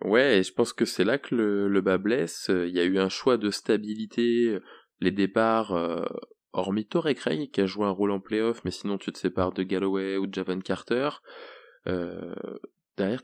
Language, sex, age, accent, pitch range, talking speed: French, male, 20-39, French, 95-115 Hz, 215 wpm